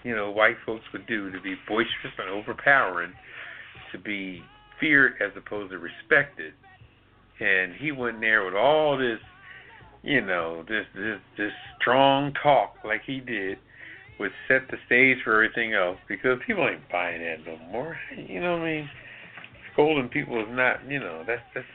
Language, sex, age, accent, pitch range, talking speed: English, male, 60-79, American, 115-155 Hz, 175 wpm